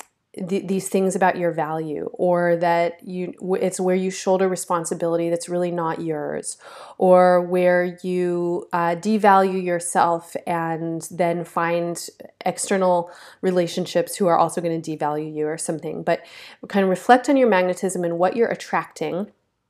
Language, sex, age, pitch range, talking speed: English, female, 30-49, 170-200 Hz, 145 wpm